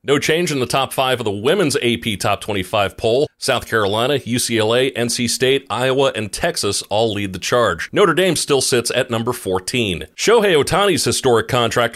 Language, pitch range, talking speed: English, 110-135 Hz, 180 wpm